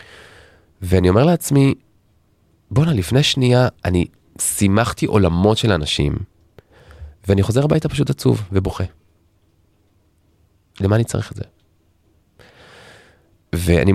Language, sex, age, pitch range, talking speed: Hebrew, male, 30-49, 85-110 Hz, 100 wpm